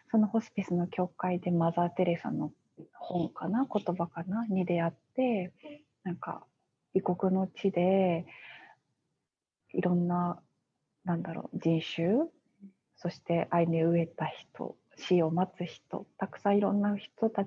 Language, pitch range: Japanese, 170-200 Hz